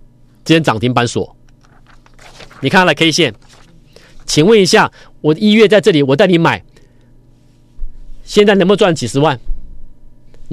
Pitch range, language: 140-225 Hz, Chinese